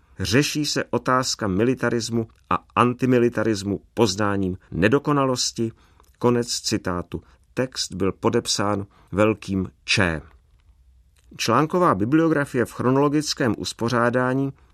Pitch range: 100-135 Hz